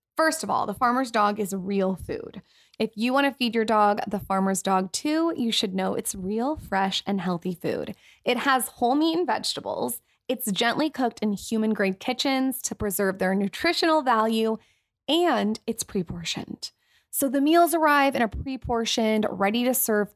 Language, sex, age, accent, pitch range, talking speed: English, female, 20-39, American, 195-250 Hz, 170 wpm